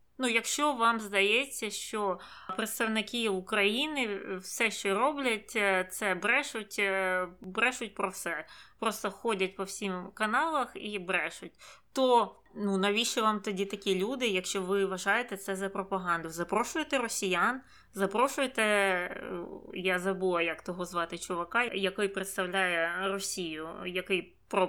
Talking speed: 120 wpm